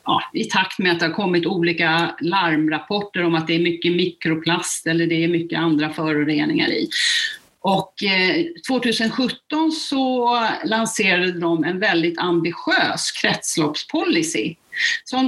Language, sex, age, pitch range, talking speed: Swedish, female, 40-59, 170-290 Hz, 120 wpm